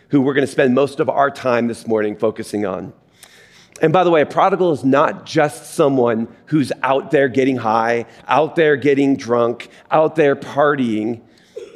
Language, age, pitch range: English, 40-59, 120-150 Hz